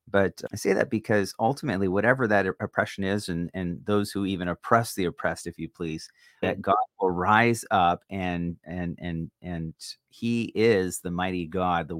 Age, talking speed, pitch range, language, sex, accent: 30-49, 180 wpm, 90-110 Hz, English, male, American